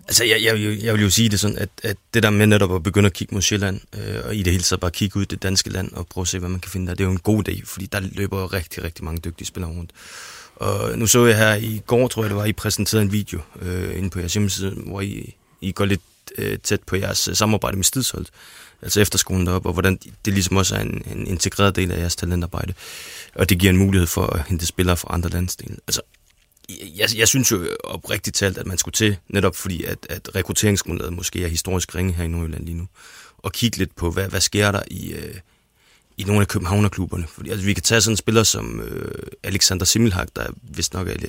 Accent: native